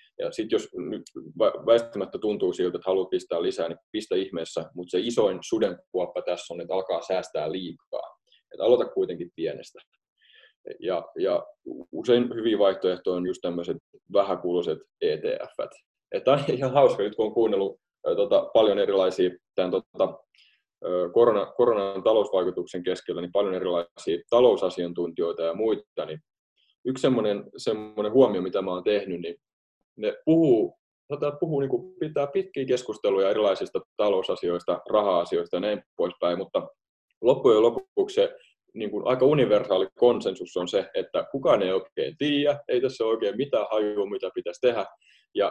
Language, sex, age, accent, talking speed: Finnish, male, 20-39, native, 140 wpm